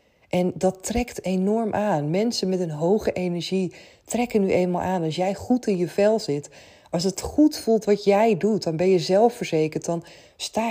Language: Dutch